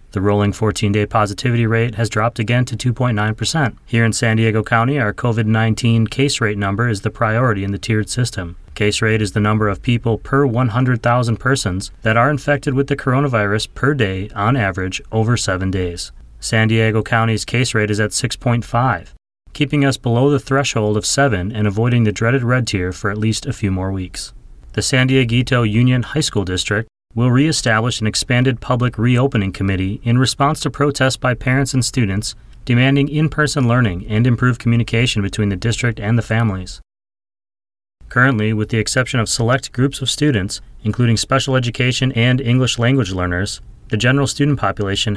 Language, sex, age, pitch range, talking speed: English, male, 30-49, 105-130 Hz, 175 wpm